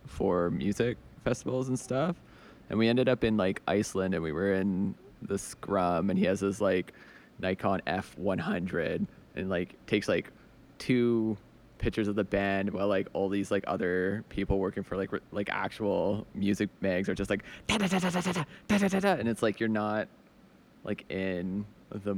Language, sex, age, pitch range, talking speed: English, male, 20-39, 95-110 Hz, 160 wpm